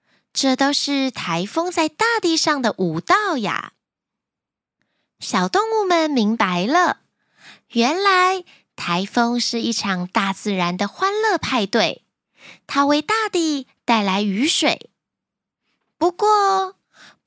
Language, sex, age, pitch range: Chinese, female, 20-39, 220-340 Hz